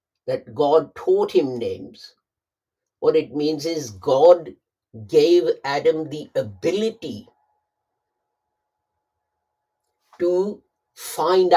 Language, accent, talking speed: English, Indian, 85 wpm